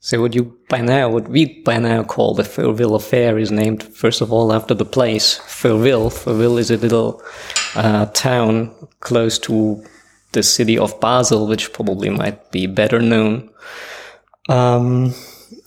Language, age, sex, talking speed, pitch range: English, 20-39, male, 155 wpm, 115-130 Hz